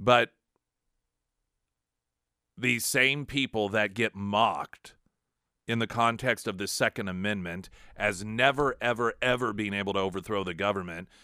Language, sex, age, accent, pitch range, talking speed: English, male, 40-59, American, 105-145 Hz, 130 wpm